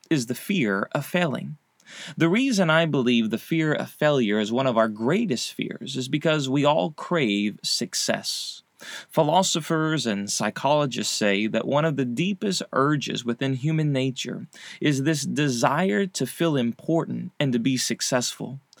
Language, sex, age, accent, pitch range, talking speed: English, male, 20-39, American, 125-165 Hz, 155 wpm